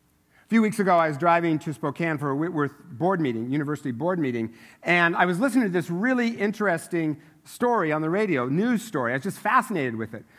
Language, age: English, 50-69